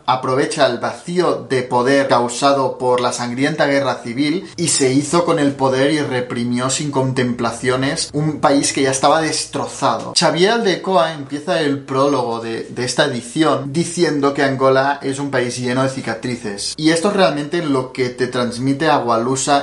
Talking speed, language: 165 wpm, Spanish